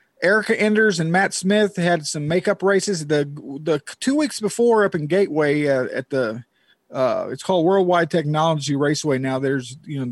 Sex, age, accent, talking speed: male, 50-69, American, 180 wpm